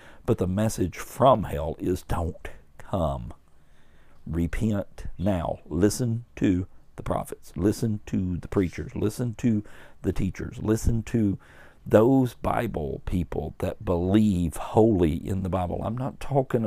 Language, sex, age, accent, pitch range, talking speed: English, male, 50-69, American, 75-95 Hz, 130 wpm